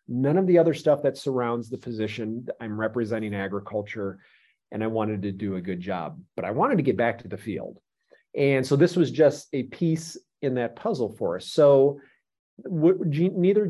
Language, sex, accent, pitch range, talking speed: English, male, American, 115-145 Hz, 190 wpm